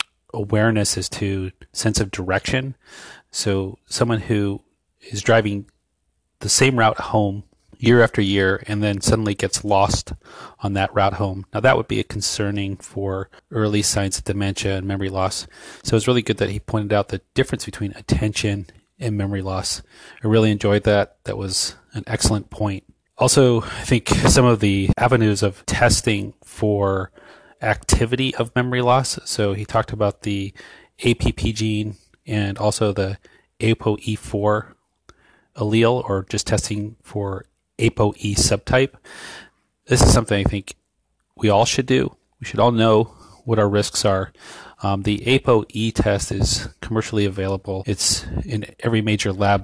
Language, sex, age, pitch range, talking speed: English, male, 30-49, 100-110 Hz, 155 wpm